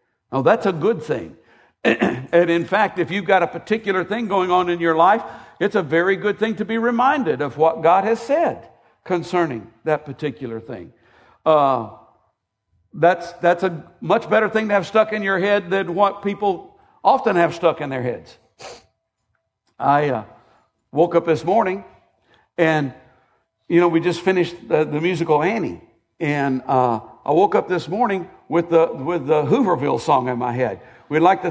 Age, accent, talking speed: 60-79, American, 180 wpm